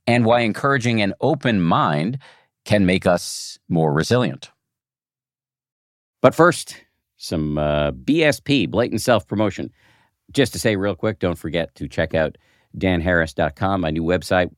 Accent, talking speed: American, 130 wpm